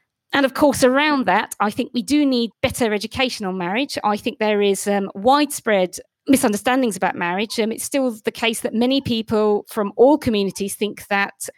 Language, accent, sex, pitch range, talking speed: English, British, female, 200-250 Hz, 185 wpm